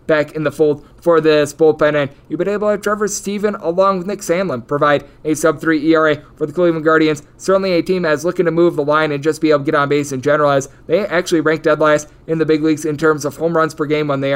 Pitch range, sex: 150-170 Hz, male